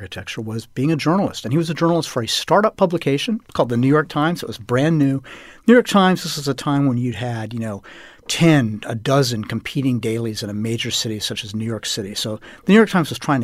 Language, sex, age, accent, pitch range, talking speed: English, male, 40-59, American, 115-155 Hz, 255 wpm